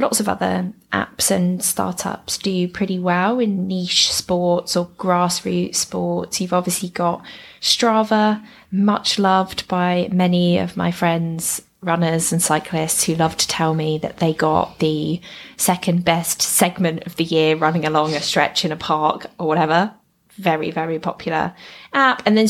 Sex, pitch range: female, 165-215 Hz